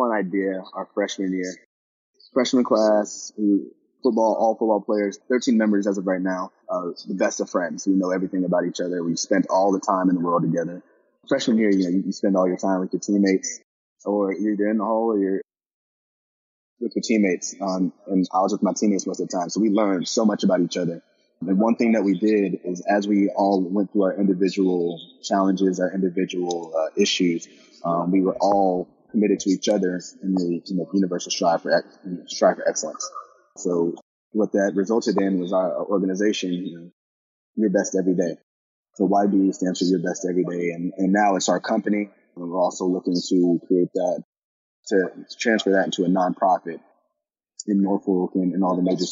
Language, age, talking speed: English, 20-39, 205 wpm